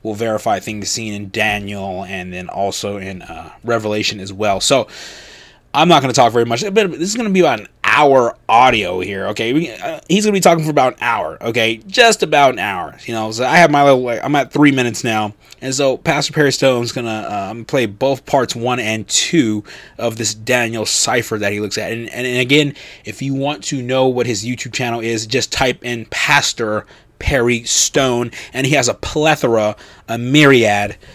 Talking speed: 220 wpm